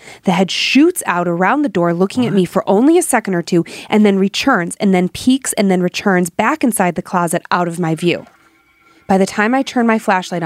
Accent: American